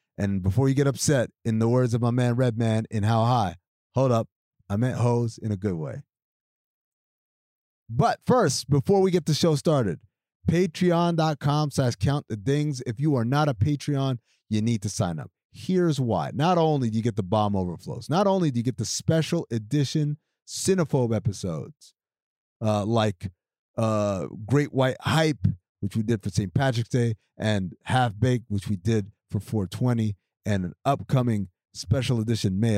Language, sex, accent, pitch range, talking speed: English, male, American, 110-160 Hz, 170 wpm